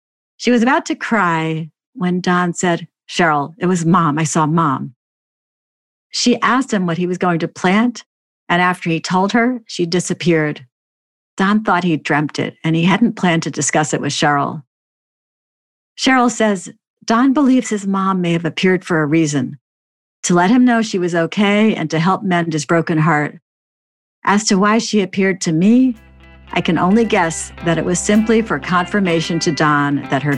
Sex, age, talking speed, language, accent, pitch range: female, 50-69, 180 wpm, English, American, 150-195 Hz